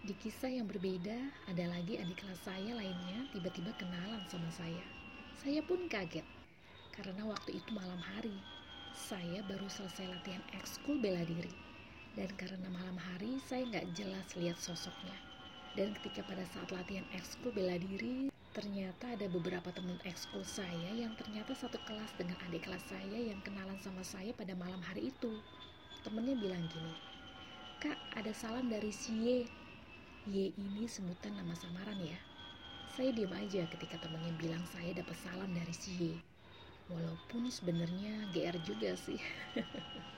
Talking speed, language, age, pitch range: 150 wpm, Indonesian, 30-49, 180-220 Hz